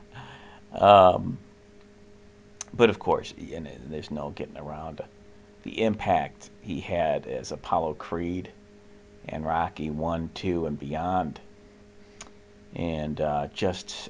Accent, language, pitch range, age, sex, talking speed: American, English, 85-105 Hz, 40-59, male, 105 wpm